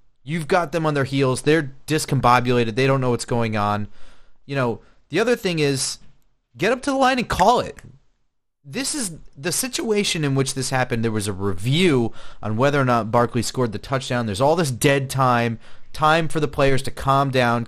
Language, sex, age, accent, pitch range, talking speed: English, male, 30-49, American, 115-155 Hz, 205 wpm